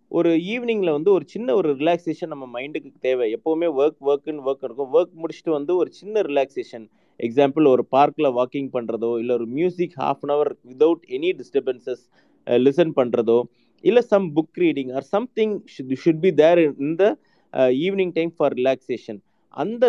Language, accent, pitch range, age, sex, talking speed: Tamil, native, 130-165 Hz, 30-49, male, 160 wpm